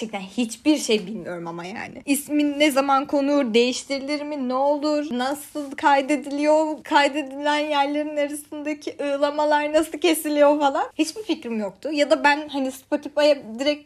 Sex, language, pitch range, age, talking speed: female, Turkish, 245-305 Hz, 20-39, 135 wpm